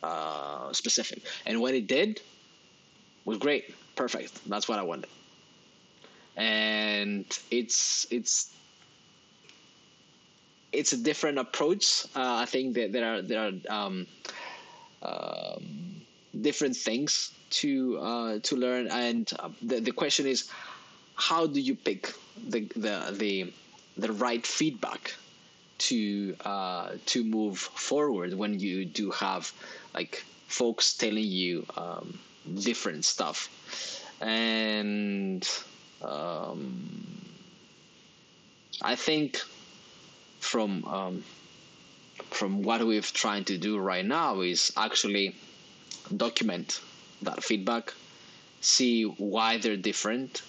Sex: male